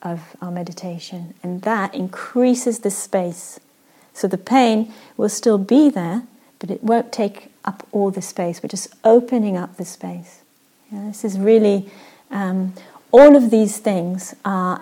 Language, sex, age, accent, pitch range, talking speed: English, female, 40-59, British, 185-235 Hz, 160 wpm